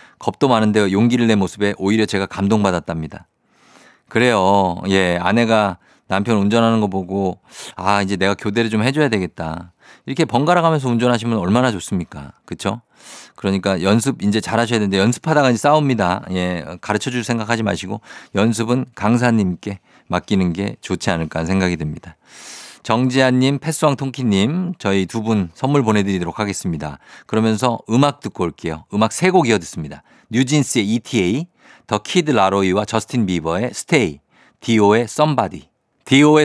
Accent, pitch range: native, 100-135 Hz